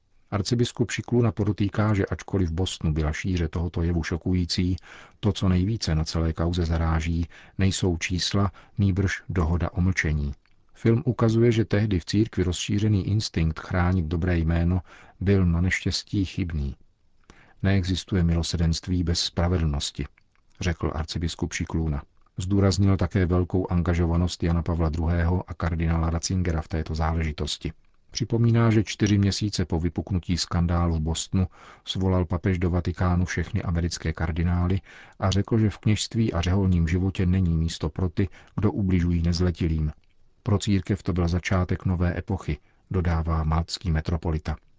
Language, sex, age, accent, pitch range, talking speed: Czech, male, 50-69, native, 85-95 Hz, 135 wpm